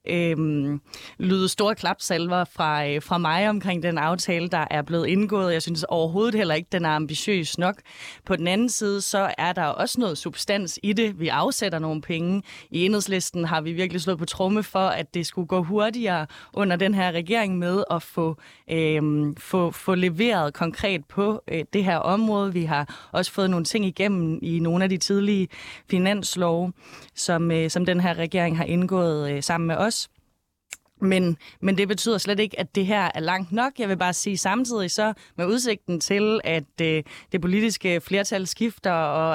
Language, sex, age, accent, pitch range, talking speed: Danish, female, 20-39, native, 165-200 Hz, 190 wpm